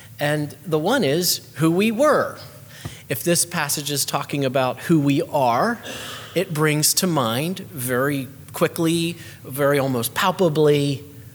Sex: male